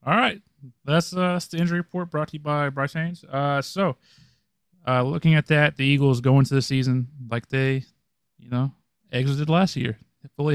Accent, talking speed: American, 195 wpm